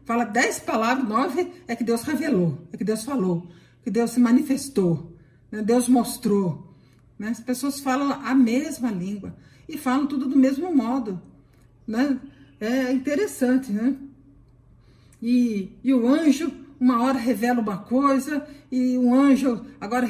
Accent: Brazilian